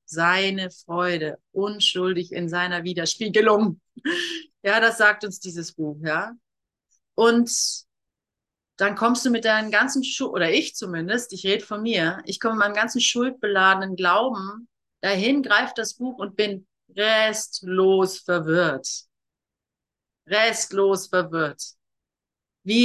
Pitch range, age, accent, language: 195-250 Hz, 30-49, German, German